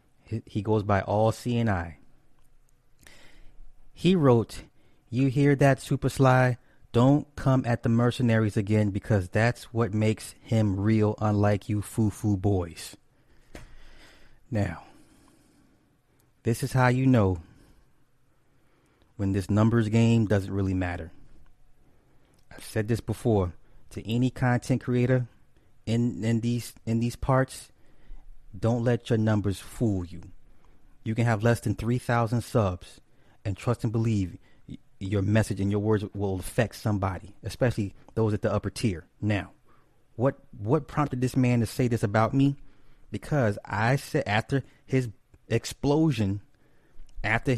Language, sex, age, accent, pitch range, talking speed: English, male, 30-49, American, 105-130 Hz, 135 wpm